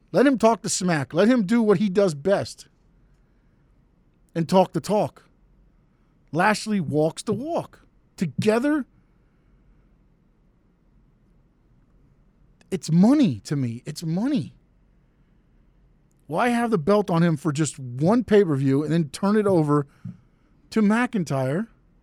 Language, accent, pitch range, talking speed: English, American, 155-210 Hz, 130 wpm